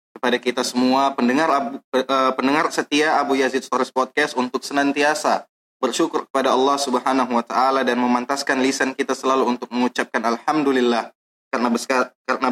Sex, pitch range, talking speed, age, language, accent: male, 120-140 Hz, 135 wpm, 20-39, Indonesian, native